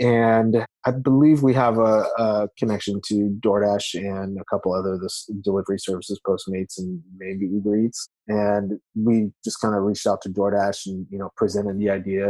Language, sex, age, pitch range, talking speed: English, male, 20-39, 100-125 Hz, 175 wpm